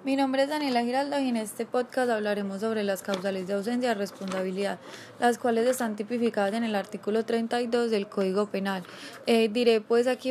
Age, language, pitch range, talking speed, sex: 20-39, Spanish, 200-245 Hz, 185 wpm, female